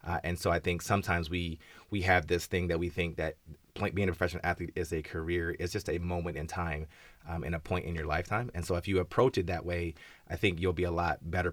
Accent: American